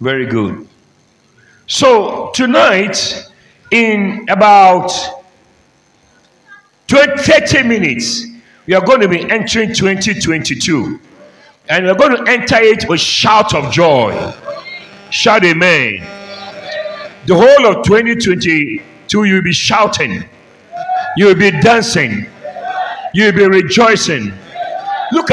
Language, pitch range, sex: English, 190-265 Hz, male